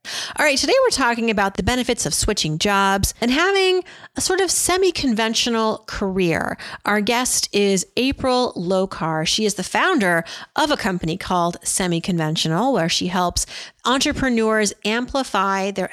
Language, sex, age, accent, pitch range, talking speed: English, female, 40-59, American, 190-245 Hz, 145 wpm